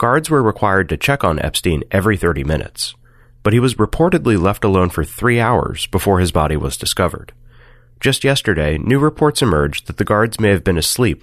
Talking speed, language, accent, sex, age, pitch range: 190 wpm, English, American, male, 30-49, 85-125 Hz